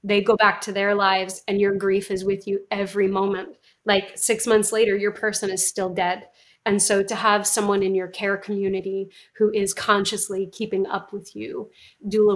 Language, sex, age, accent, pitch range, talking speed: English, female, 30-49, American, 195-210 Hz, 195 wpm